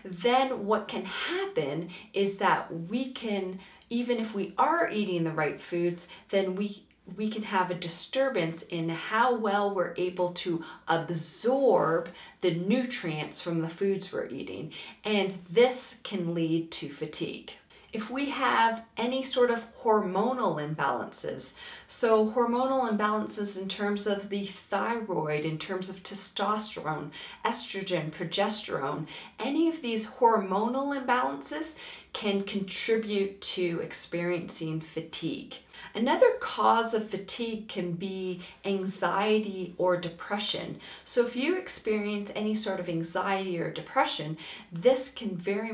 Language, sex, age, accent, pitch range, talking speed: English, female, 30-49, American, 175-230 Hz, 125 wpm